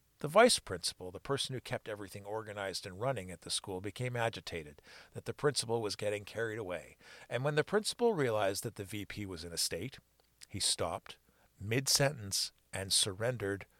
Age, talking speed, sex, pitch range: 50-69, 175 wpm, male, 90-125 Hz